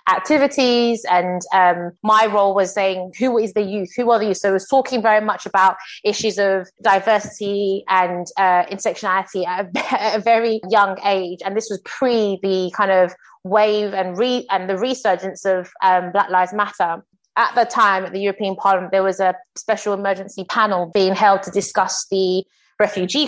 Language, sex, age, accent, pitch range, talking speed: English, female, 20-39, British, 190-215 Hz, 185 wpm